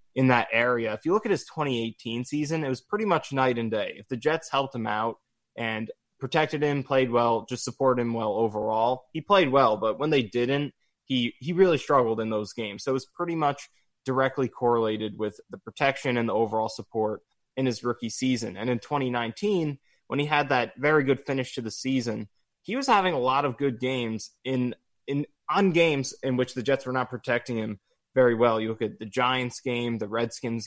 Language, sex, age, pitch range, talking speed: English, male, 20-39, 115-140 Hz, 210 wpm